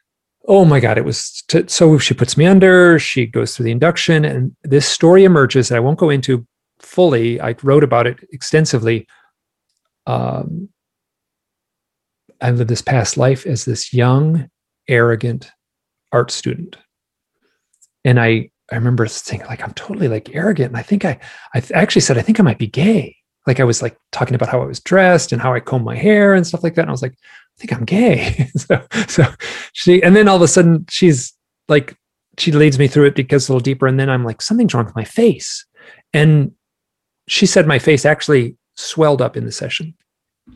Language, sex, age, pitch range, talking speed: English, male, 40-59, 125-170 Hz, 195 wpm